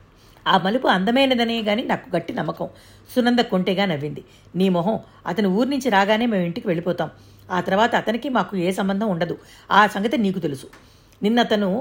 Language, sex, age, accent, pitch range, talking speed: Telugu, female, 50-69, native, 180-230 Hz, 160 wpm